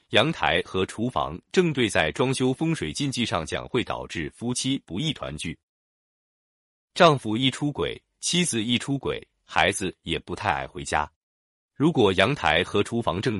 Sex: male